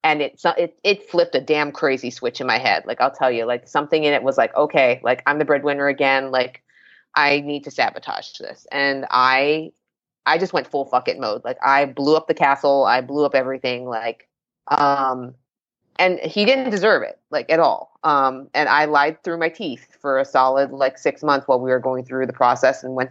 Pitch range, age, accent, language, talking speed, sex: 130-150 Hz, 30-49, American, English, 220 wpm, female